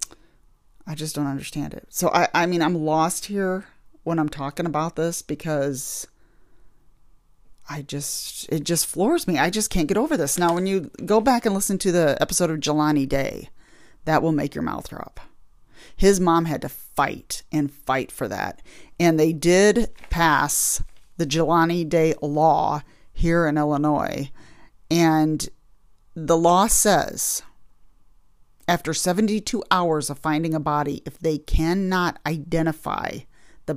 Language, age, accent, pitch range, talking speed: English, 40-59, American, 145-170 Hz, 150 wpm